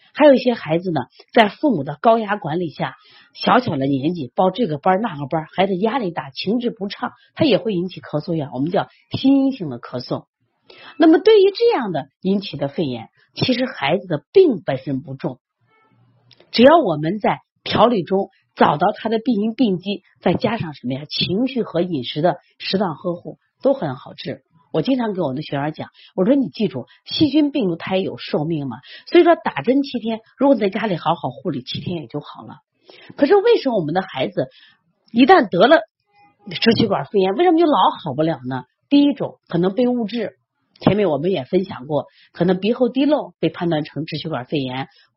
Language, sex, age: Chinese, female, 30-49